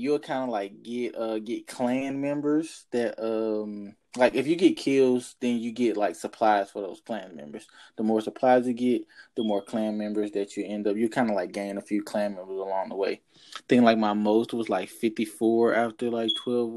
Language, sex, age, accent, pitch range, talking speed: English, male, 20-39, American, 110-130 Hz, 215 wpm